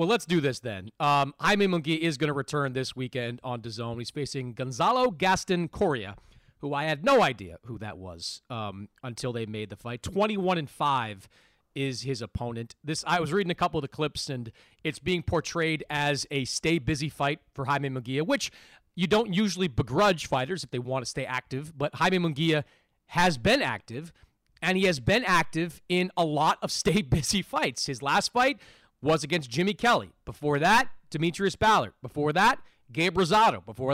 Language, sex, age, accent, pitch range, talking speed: English, male, 30-49, American, 130-190 Hz, 185 wpm